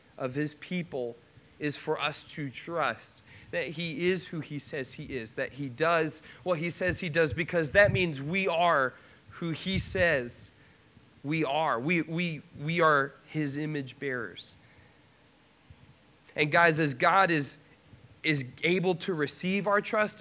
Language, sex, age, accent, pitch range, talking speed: English, male, 20-39, American, 130-165 Hz, 155 wpm